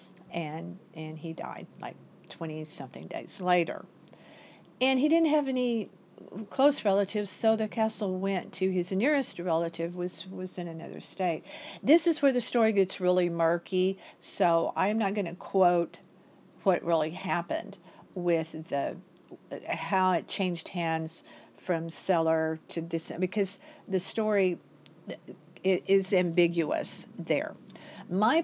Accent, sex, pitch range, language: American, female, 170-215 Hz, English